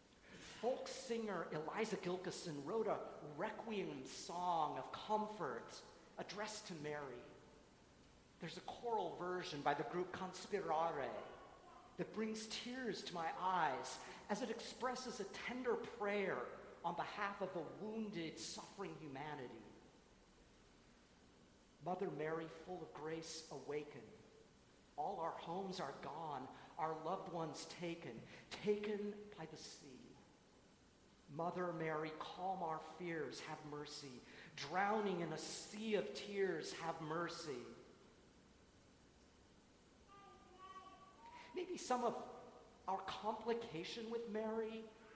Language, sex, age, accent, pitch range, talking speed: English, male, 50-69, American, 165-225 Hz, 110 wpm